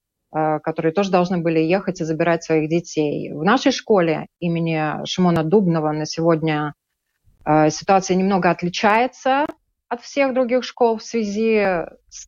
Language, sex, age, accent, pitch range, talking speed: Russian, female, 30-49, native, 160-190 Hz, 130 wpm